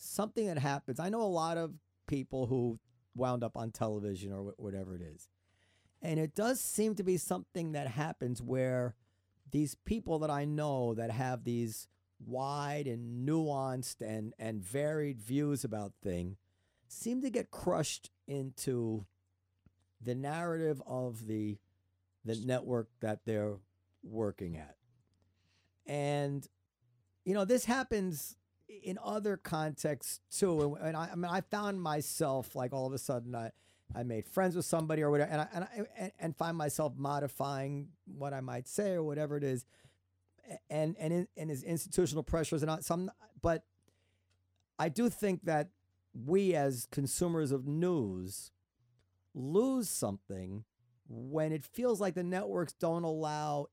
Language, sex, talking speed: English, male, 150 wpm